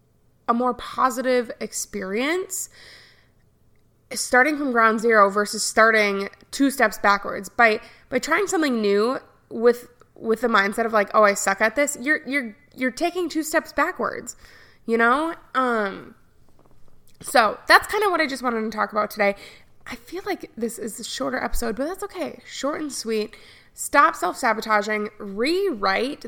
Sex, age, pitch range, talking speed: female, 20-39, 220-285 Hz, 155 wpm